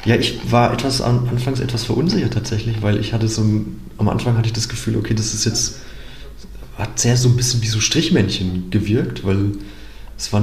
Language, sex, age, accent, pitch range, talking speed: German, male, 30-49, German, 100-115 Hz, 195 wpm